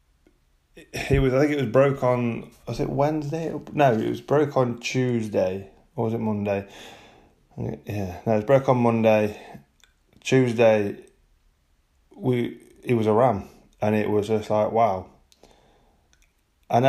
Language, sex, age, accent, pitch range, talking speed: English, male, 20-39, British, 105-130 Hz, 145 wpm